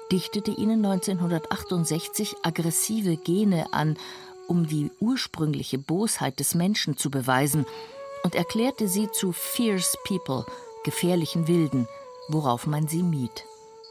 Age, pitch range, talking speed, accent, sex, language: 50-69, 150-210 Hz, 110 wpm, German, female, German